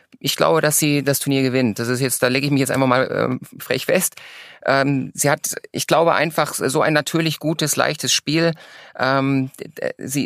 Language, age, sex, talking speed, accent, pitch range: German, 30-49, male, 200 wpm, German, 130-155 Hz